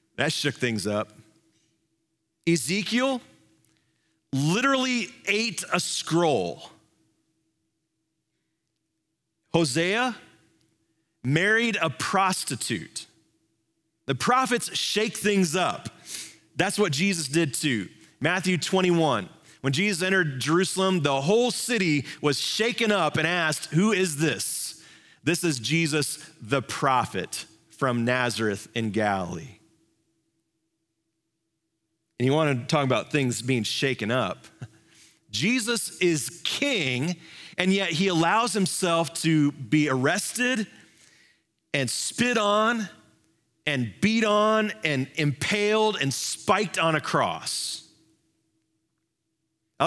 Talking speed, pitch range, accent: 100 wpm, 130-180 Hz, American